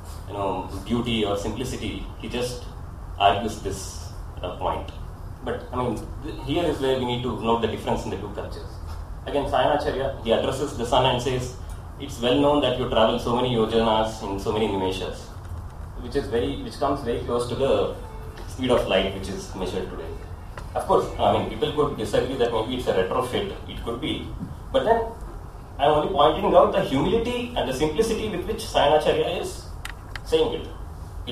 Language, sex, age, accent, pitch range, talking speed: English, male, 30-49, Indian, 95-135 Hz, 190 wpm